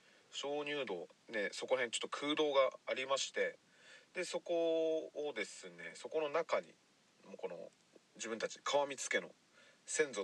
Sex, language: male, Japanese